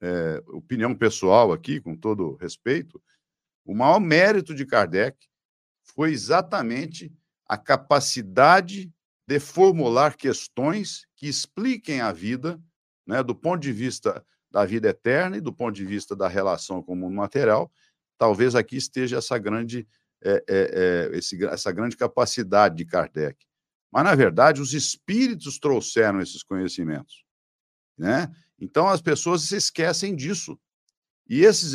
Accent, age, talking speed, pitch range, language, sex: Brazilian, 50-69, 125 wpm, 105-165 Hz, Portuguese, male